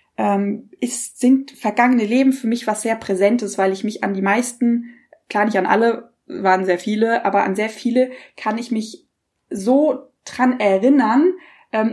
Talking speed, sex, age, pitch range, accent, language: 165 wpm, female, 20-39, 205-265 Hz, German, German